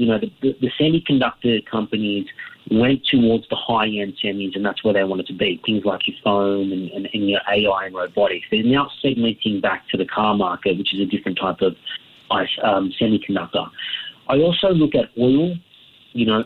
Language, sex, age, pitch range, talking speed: English, male, 40-59, 105-140 Hz, 190 wpm